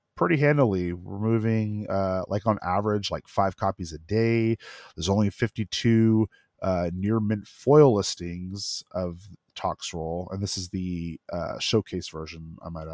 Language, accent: English, American